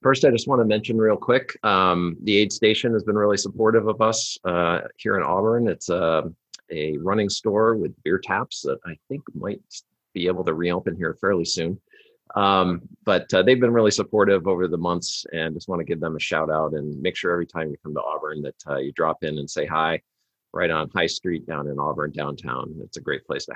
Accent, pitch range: American, 85-110 Hz